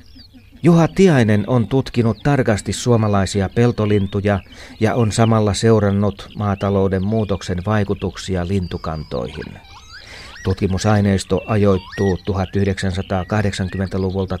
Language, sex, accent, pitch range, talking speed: Finnish, male, native, 95-110 Hz, 75 wpm